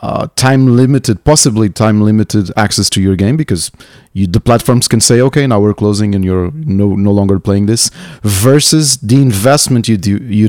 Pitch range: 100-130 Hz